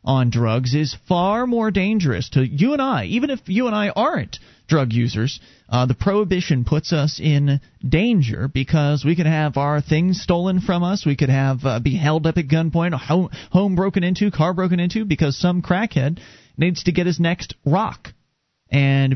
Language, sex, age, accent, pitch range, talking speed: English, male, 30-49, American, 135-180 Hz, 190 wpm